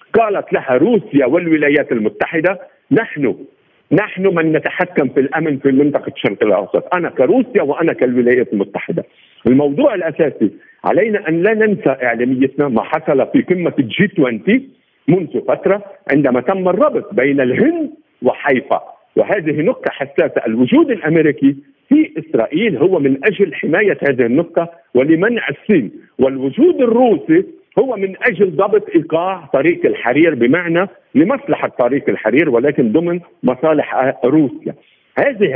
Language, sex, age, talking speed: Arabic, male, 50-69, 125 wpm